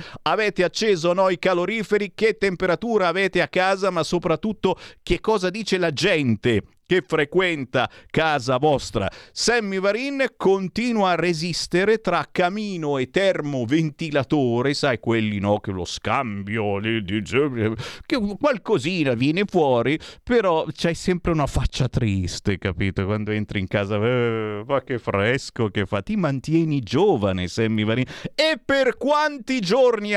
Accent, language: native, Italian